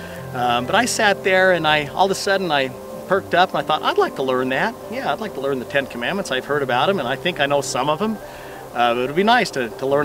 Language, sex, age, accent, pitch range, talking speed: English, male, 40-59, American, 125-165 Hz, 300 wpm